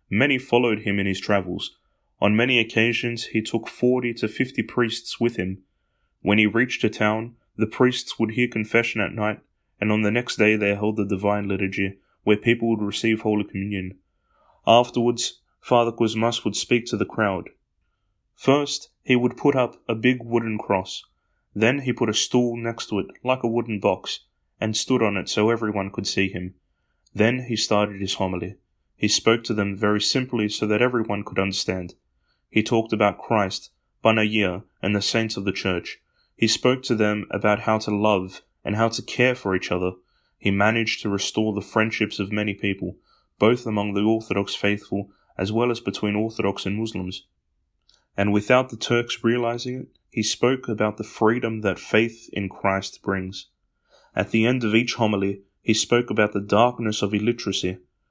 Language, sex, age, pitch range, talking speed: English, male, 20-39, 100-115 Hz, 180 wpm